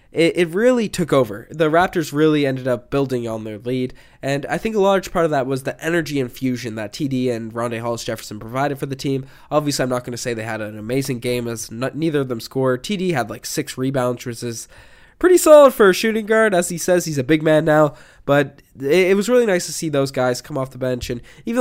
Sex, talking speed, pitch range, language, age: male, 245 wpm, 125-160 Hz, English, 10-29